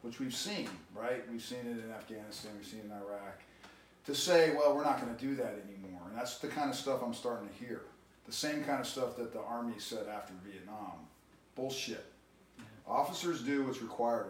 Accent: American